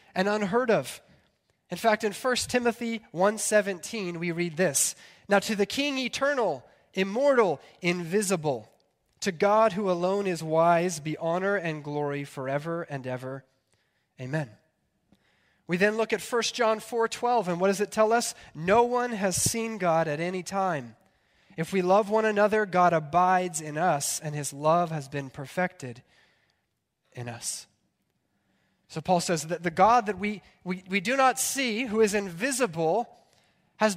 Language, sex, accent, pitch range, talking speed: English, male, American, 155-210 Hz, 155 wpm